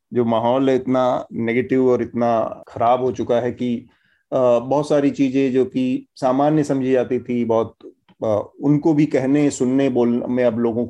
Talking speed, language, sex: 160 wpm, Hindi, male